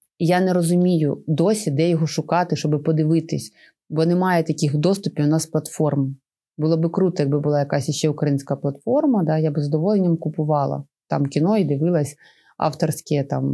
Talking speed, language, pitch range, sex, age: 160 wpm, Ukrainian, 155-195 Hz, female, 30-49